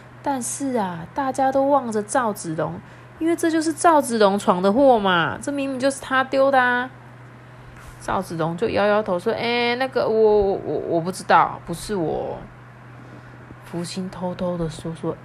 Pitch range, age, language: 175-260 Hz, 30-49, Chinese